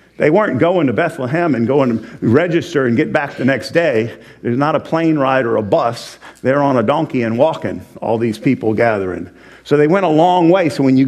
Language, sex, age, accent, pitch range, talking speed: English, male, 50-69, American, 125-170 Hz, 225 wpm